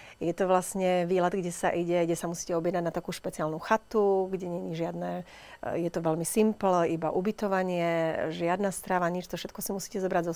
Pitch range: 175-200 Hz